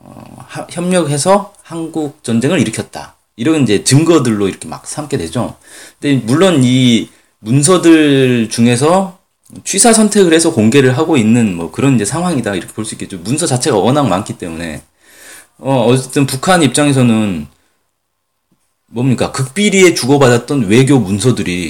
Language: Korean